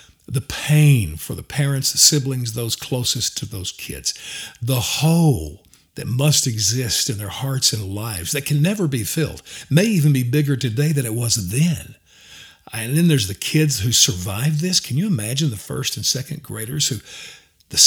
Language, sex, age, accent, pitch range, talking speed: English, male, 50-69, American, 115-150 Hz, 180 wpm